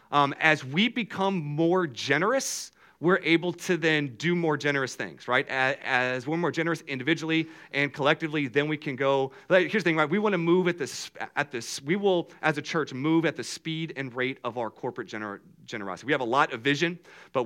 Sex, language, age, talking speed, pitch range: male, English, 40-59, 215 wpm, 120-170 Hz